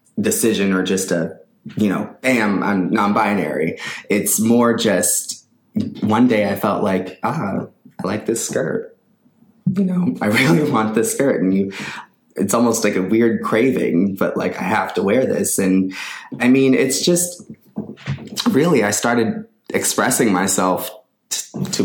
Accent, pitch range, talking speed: American, 90-110 Hz, 160 wpm